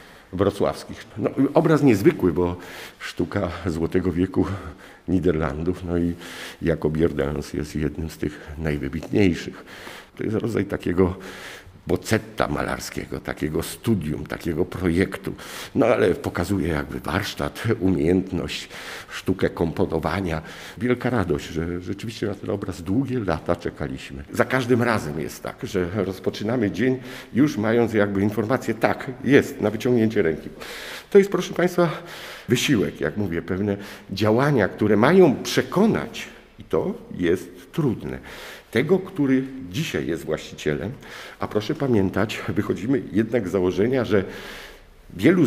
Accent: native